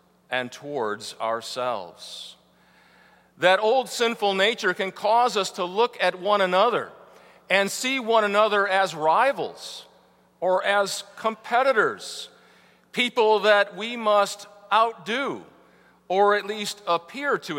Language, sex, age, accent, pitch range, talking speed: English, male, 50-69, American, 155-210 Hz, 115 wpm